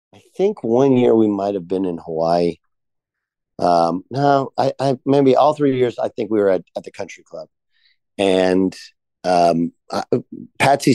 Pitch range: 85-120 Hz